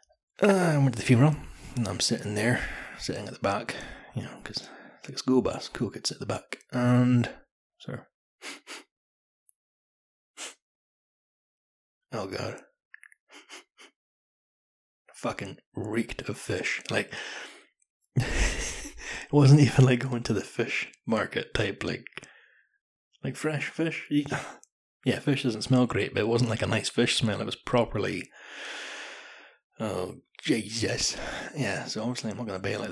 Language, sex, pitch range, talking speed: English, male, 110-145 Hz, 140 wpm